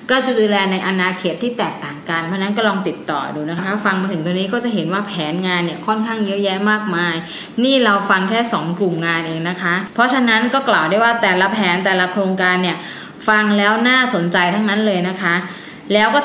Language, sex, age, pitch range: Thai, female, 20-39, 180-225 Hz